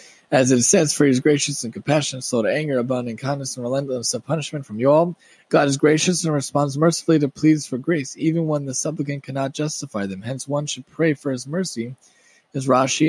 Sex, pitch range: male, 130-155 Hz